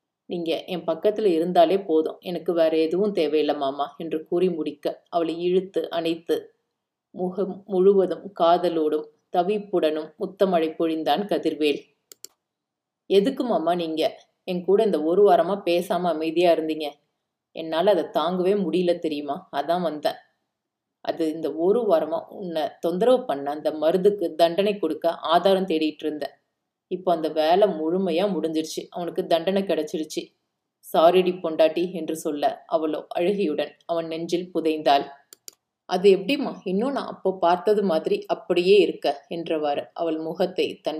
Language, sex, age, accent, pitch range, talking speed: Tamil, female, 30-49, native, 160-190 Hz, 120 wpm